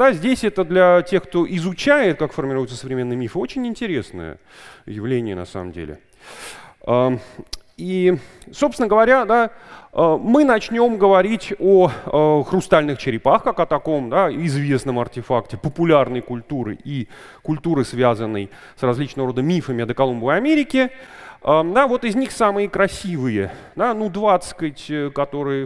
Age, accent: 30-49, native